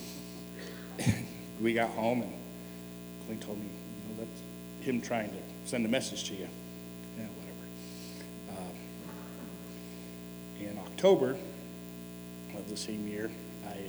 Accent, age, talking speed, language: American, 50-69, 120 wpm, English